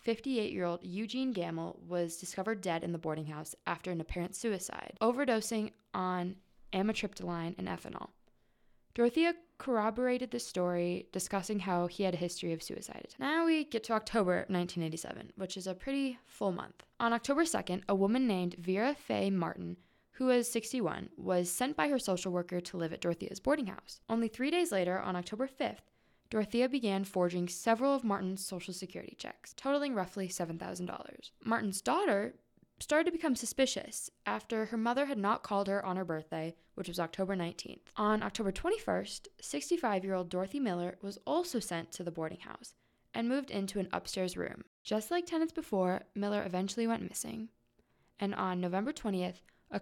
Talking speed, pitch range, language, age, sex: 165 wpm, 180-240 Hz, English, 20-39, female